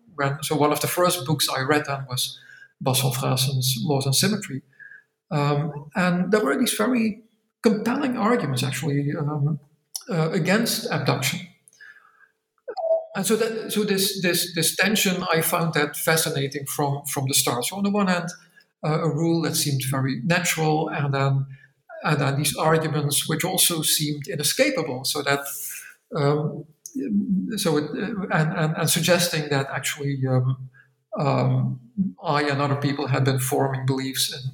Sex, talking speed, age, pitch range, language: male, 150 wpm, 50-69, 140-180 Hz, English